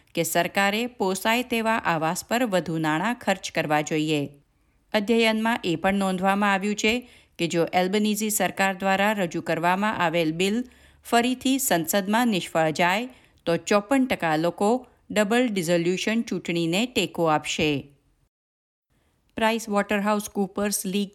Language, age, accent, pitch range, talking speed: Gujarati, 50-69, native, 170-220 Hz, 115 wpm